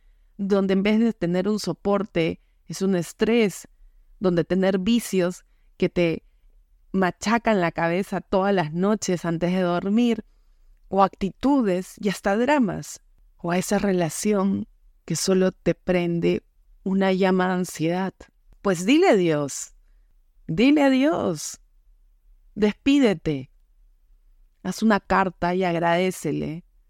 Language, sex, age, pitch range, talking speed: Spanish, female, 30-49, 160-195 Hz, 120 wpm